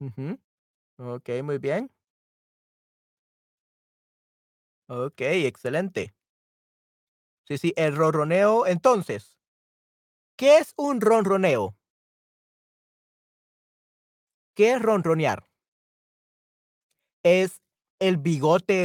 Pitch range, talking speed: 145-220 Hz, 65 wpm